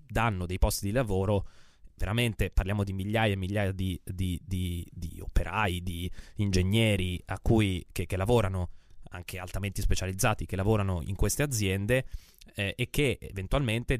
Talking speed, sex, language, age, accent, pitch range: 150 wpm, male, Italian, 20-39, native, 95-115 Hz